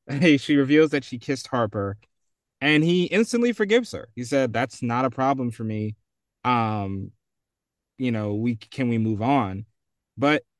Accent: American